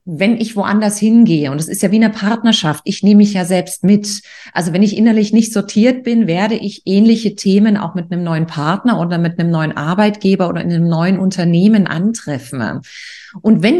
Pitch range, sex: 175-230 Hz, female